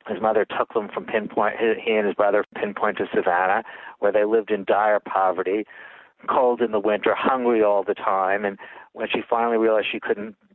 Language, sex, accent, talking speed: English, male, American, 195 wpm